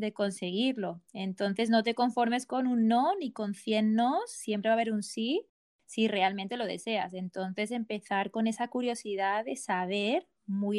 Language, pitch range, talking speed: Spanish, 200-240 Hz, 170 wpm